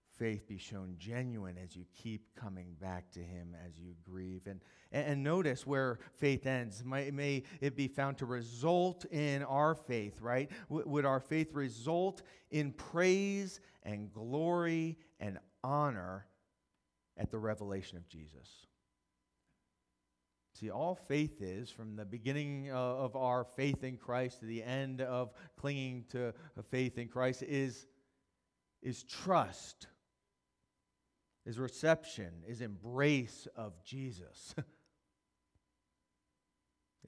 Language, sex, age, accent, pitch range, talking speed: English, male, 40-59, American, 90-135 Hz, 125 wpm